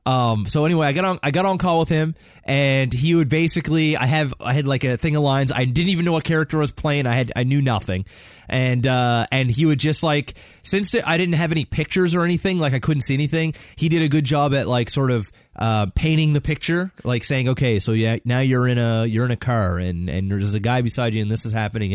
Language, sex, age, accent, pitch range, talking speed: English, male, 20-39, American, 110-140 Hz, 260 wpm